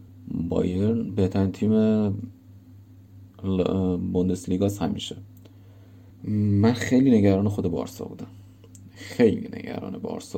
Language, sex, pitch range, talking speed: English, male, 90-100 Hz, 85 wpm